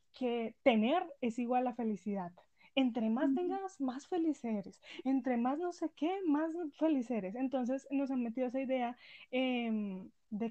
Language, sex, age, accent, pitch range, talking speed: Spanish, female, 10-29, Colombian, 225-275 Hz, 155 wpm